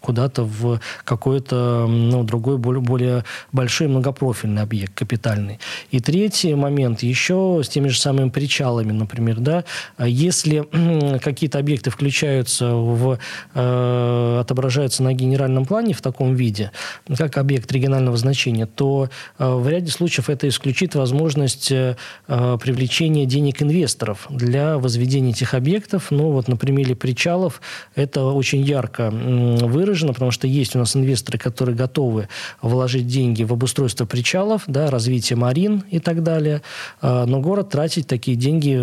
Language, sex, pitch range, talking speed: Russian, male, 120-145 Hz, 125 wpm